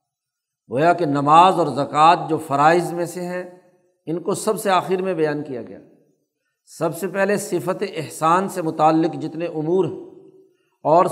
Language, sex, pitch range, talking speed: Urdu, male, 155-185 Hz, 160 wpm